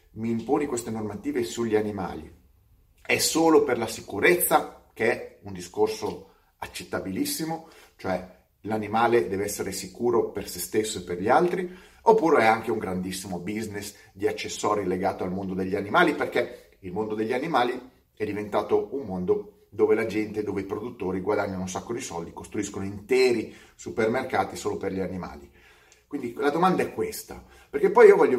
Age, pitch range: 30-49, 100-160 Hz